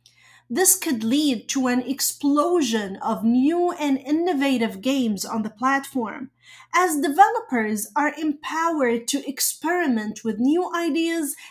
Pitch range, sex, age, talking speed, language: 220-290 Hz, female, 30-49, 120 wpm, English